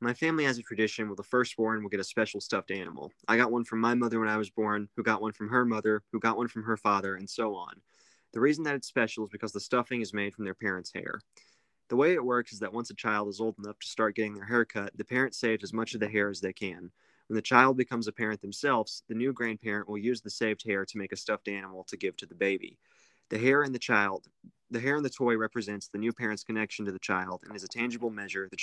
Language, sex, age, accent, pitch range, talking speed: English, male, 20-39, American, 105-120 Hz, 275 wpm